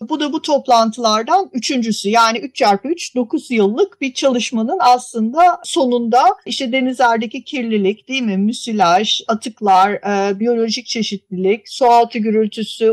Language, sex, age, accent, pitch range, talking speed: Turkish, female, 50-69, native, 215-270 Hz, 115 wpm